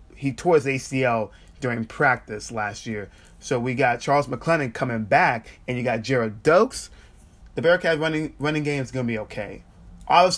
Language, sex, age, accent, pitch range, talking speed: English, male, 20-39, American, 105-140 Hz, 175 wpm